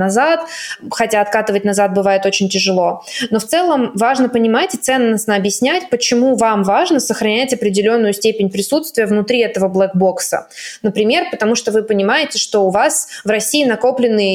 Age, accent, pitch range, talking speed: 20-39, native, 195-230 Hz, 150 wpm